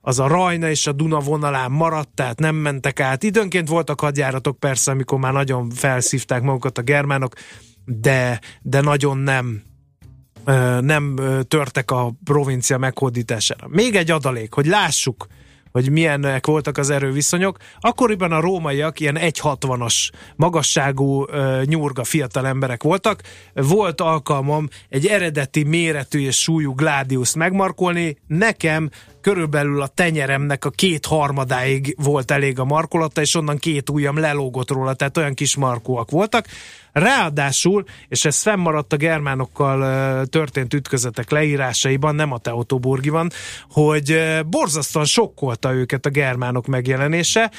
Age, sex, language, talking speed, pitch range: 30-49, male, Hungarian, 130 wpm, 135-165 Hz